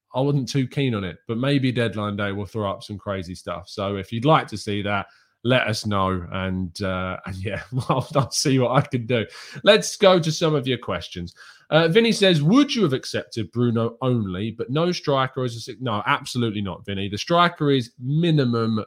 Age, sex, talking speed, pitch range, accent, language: 20-39, male, 205 wpm, 105-150 Hz, British, English